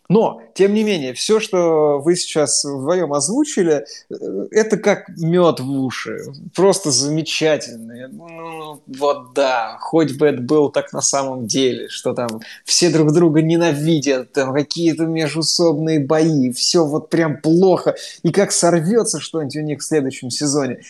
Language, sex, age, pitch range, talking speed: Russian, male, 20-39, 145-190 Hz, 145 wpm